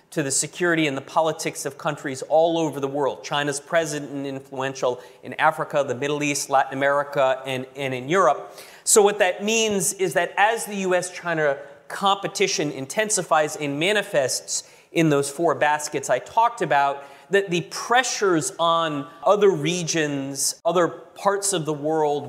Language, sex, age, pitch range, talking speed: English, male, 30-49, 145-185 Hz, 155 wpm